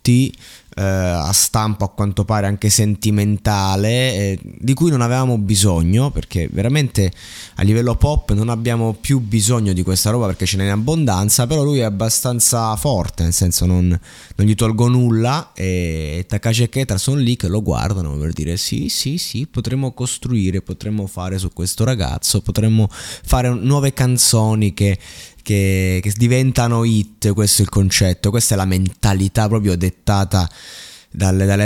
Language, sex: Italian, male